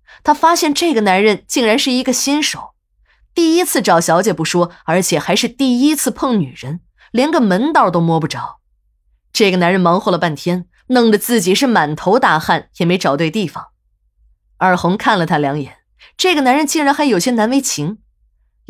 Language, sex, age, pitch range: Chinese, female, 20-39, 165-230 Hz